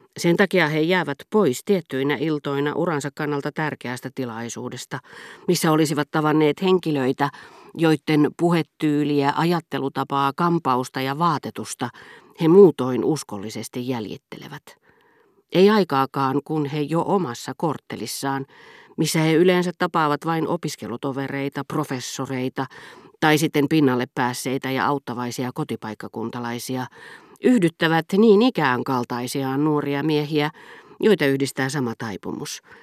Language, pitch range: Finnish, 130-160 Hz